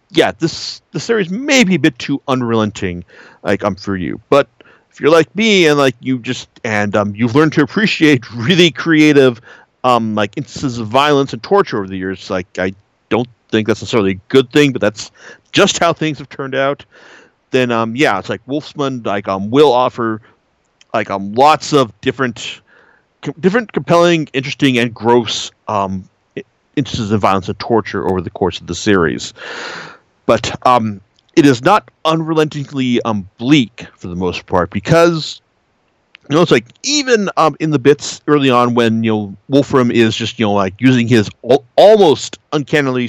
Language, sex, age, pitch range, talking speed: English, male, 40-59, 105-145 Hz, 180 wpm